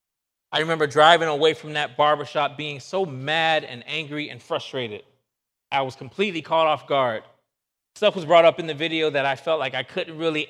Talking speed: 195 wpm